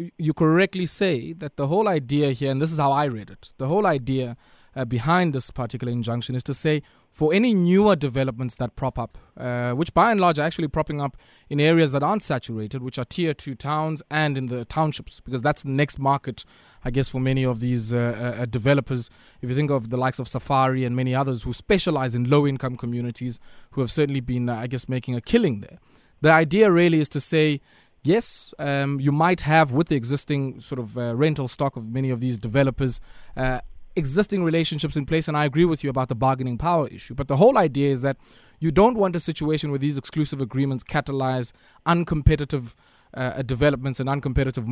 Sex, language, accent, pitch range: male, English, South African, 130-155 Hz